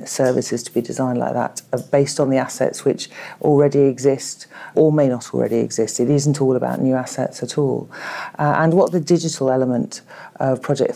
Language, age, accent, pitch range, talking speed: English, 40-59, British, 120-145 Hz, 190 wpm